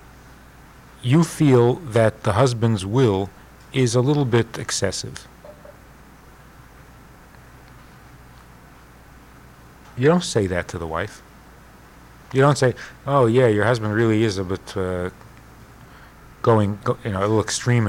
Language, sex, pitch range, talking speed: English, male, 100-165 Hz, 120 wpm